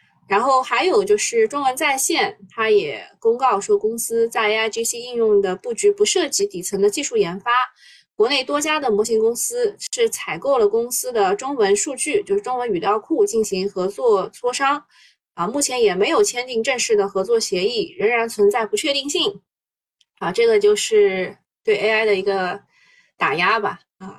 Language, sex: Chinese, female